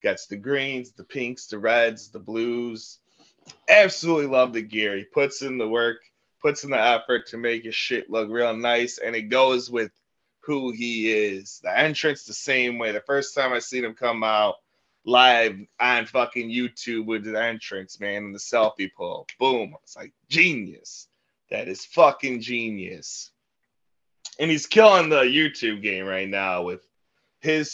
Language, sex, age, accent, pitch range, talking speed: English, male, 20-39, American, 110-145 Hz, 170 wpm